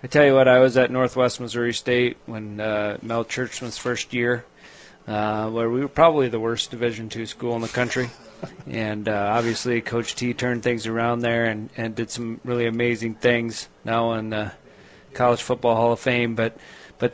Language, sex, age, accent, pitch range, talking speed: English, male, 30-49, American, 115-135 Hz, 195 wpm